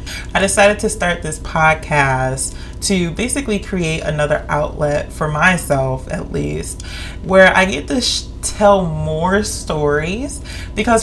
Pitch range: 150-215 Hz